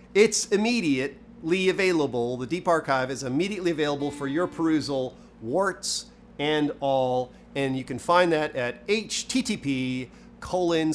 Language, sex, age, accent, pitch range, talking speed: English, male, 40-59, American, 140-215 Hz, 125 wpm